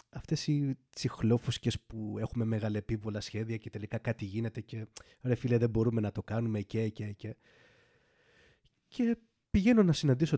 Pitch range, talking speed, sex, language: 105-160 Hz, 150 wpm, male, Greek